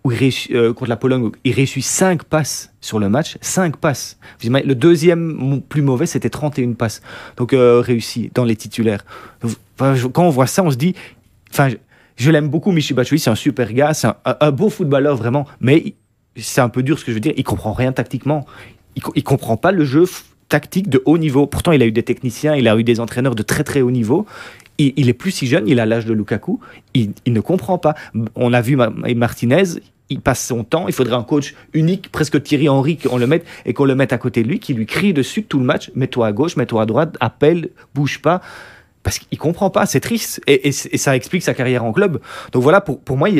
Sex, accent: male, French